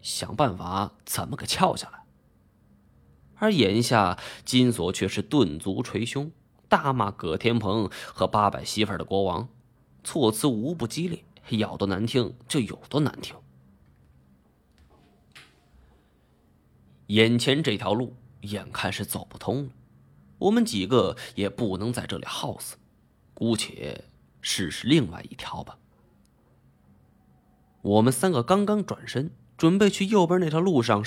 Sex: male